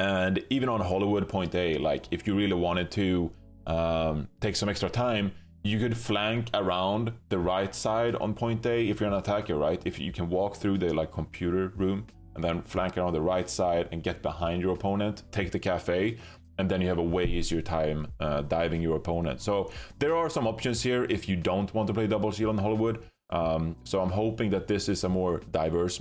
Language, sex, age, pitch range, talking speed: English, male, 20-39, 85-105 Hz, 215 wpm